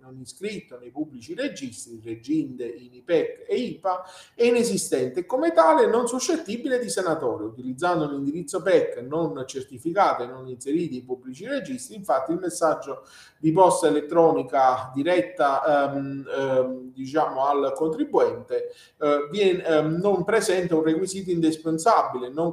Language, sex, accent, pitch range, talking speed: Italian, male, native, 140-225 Hz, 135 wpm